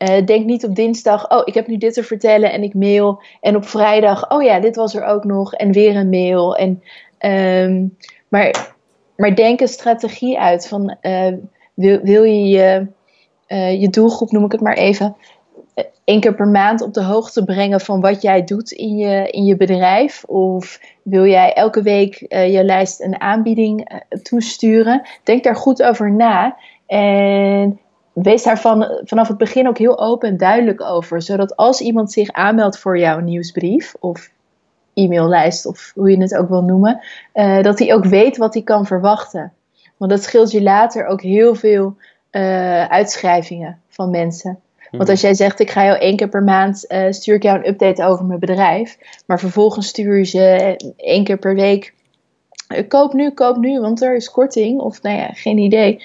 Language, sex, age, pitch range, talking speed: Dutch, female, 20-39, 190-225 Hz, 185 wpm